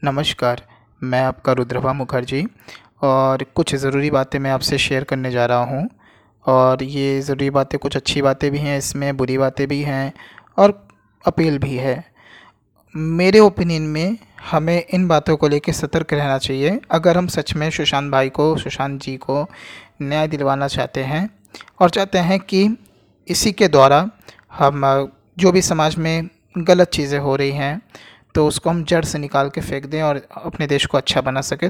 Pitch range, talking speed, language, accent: 135-160 Hz, 175 wpm, Hindi, native